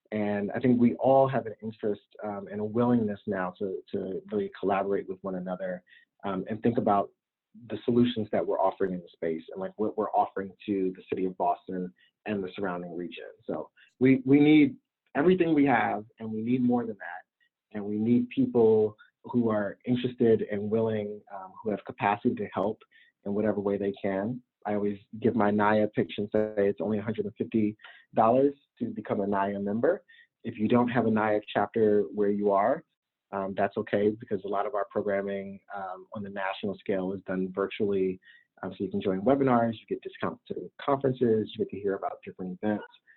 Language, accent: English, American